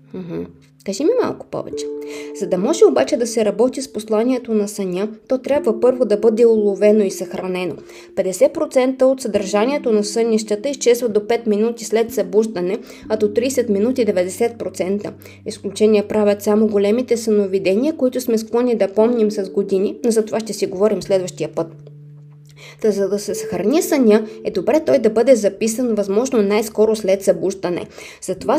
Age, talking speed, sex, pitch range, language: 20-39, 160 wpm, female, 190-230 Hz, Bulgarian